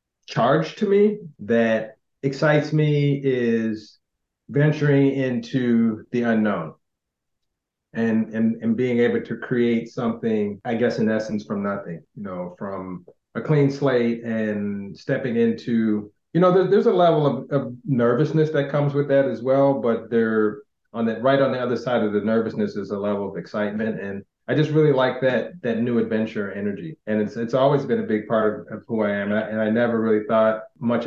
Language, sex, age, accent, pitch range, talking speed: English, male, 30-49, American, 110-135 Hz, 185 wpm